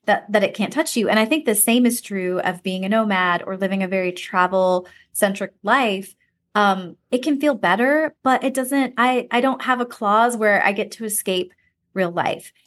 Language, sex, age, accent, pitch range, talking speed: English, female, 20-39, American, 190-240 Hz, 210 wpm